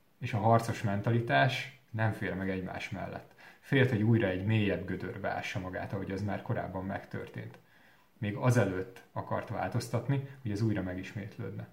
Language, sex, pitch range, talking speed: Hungarian, male, 100-125 Hz, 155 wpm